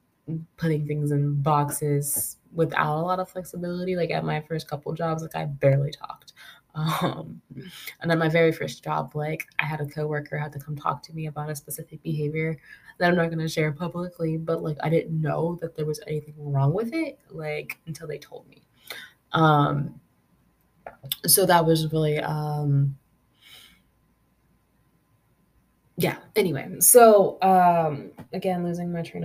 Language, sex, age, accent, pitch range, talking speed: English, female, 20-39, American, 150-170 Hz, 160 wpm